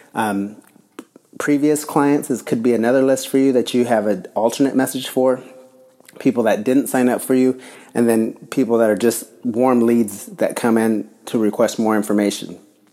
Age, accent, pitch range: 30-49, American, 110-125 Hz